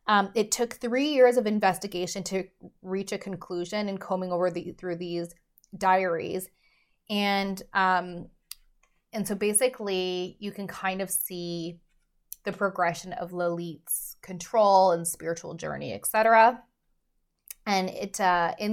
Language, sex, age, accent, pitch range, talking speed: English, female, 20-39, American, 180-210 Hz, 135 wpm